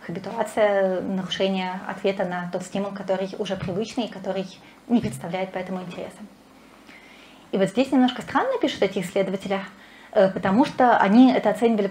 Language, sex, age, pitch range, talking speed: Russian, female, 20-39, 190-230 Hz, 140 wpm